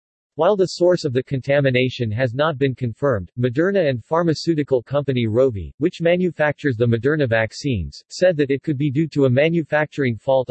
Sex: male